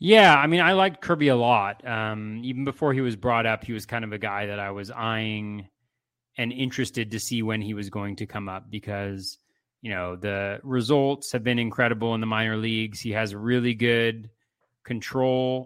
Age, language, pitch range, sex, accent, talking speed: 30-49, English, 105-130 Hz, male, American, 205 wpm